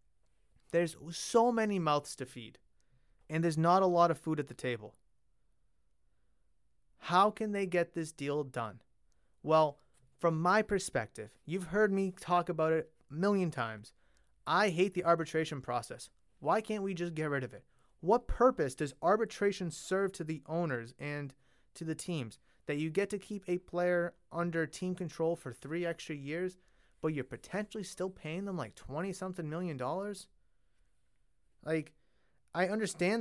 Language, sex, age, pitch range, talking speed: English, male, 30-49, 145-195 Hz, 160 wpm